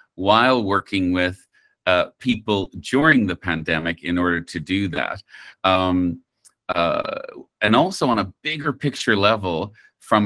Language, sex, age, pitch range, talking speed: English, male, 40-59, 90-115 Hz, 135 wpm